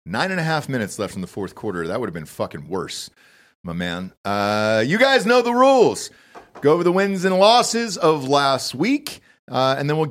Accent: American